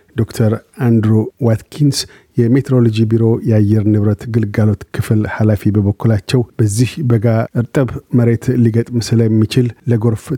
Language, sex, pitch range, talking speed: Amharic, male, 110-125 Hz, 105 wpm